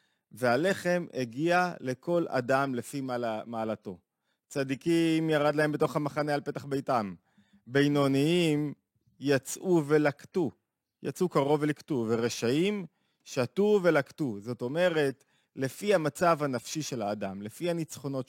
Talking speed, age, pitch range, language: 110 wpm, 30-49, 125-160 Hz, Hebrew